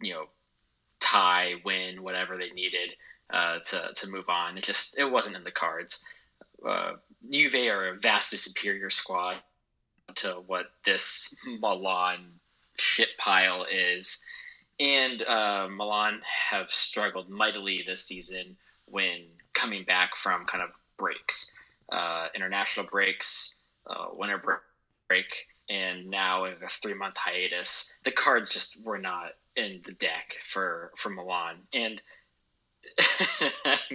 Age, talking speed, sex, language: 20-39, 125 wpm, male, English